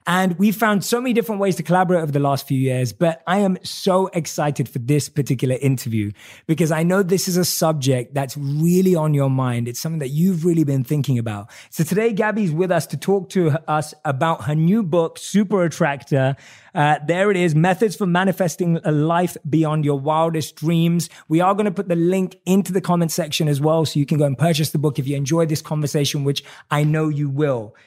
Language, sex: English, male